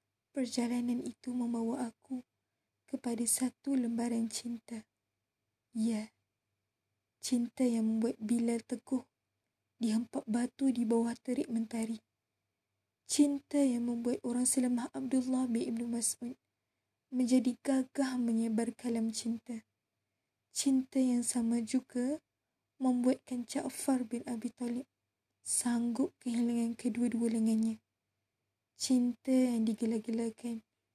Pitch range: 225-250 Hz